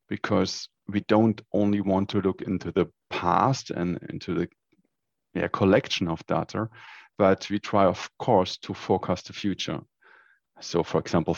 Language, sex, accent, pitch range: English, male, German, 90-105 Hz